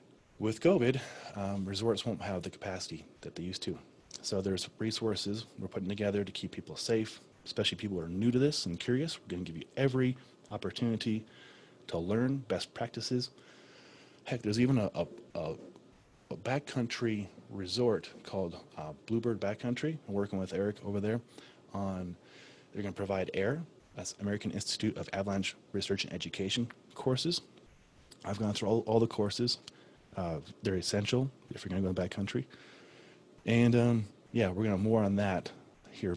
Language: English